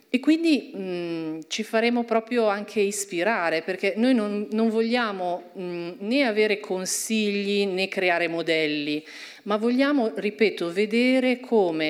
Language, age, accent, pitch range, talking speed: Italian, 40-59, native, 165-215 Hz, 115 wpm